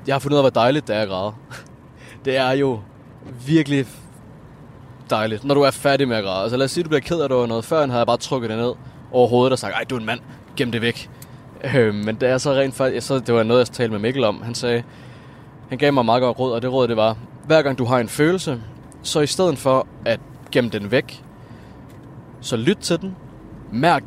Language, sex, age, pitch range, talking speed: Danish, male, 20-39, 115-145 Hz, 245 wpm